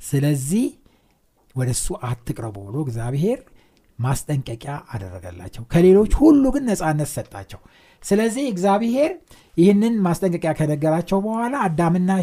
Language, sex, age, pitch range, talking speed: Amharic, male, 60-79, 130-200 Hz, 100 wpm